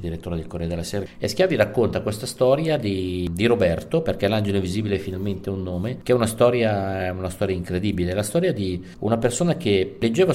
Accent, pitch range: native, 95-110 Hz